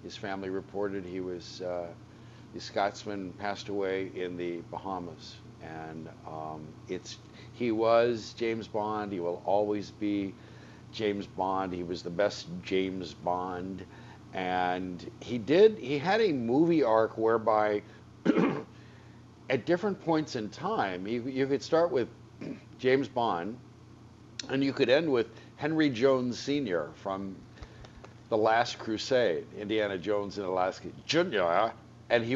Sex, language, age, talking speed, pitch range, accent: male, English, 50-69, 135 wpm, 95-120 Hz, American